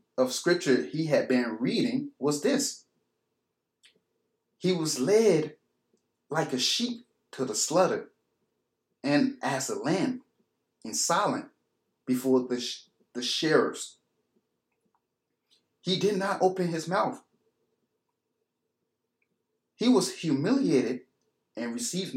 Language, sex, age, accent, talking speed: English, male, 30-49, American, 105 wpm